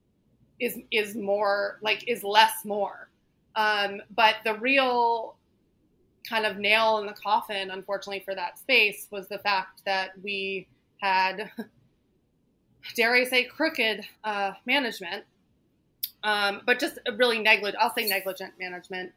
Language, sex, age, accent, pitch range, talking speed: English, female, 20-39, American, 190-215 Hz, 135 wpm